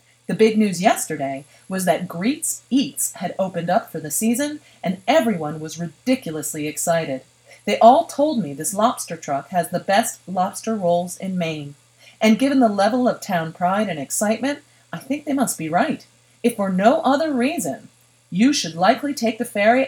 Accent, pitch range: American, 155-235 Hz